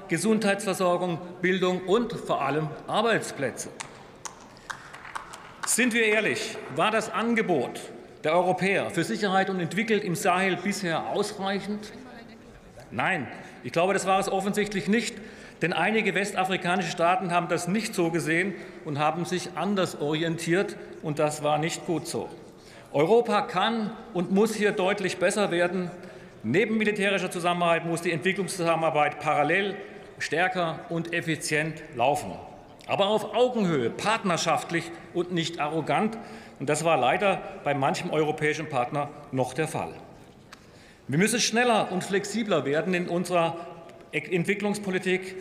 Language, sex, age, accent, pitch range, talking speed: German, male, 40-59, German, 160-200 Hz, 125 wpm